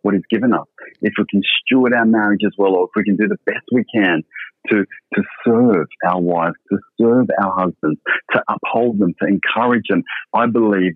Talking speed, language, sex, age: 210 wpm, English, male, 40-59